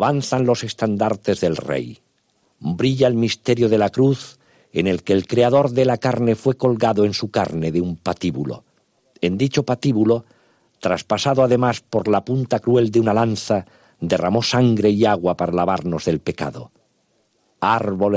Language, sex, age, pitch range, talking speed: Spanish, male, 50-69, 90-120 Hz, 160 wpm